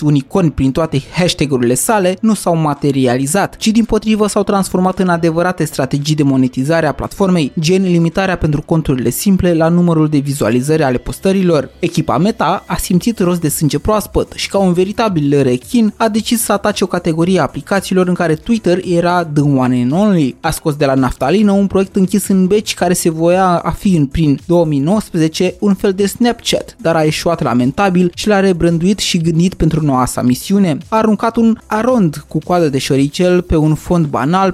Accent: native